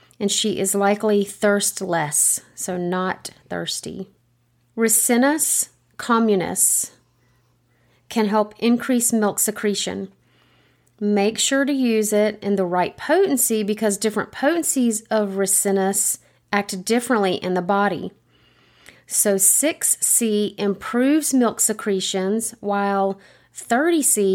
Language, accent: English, American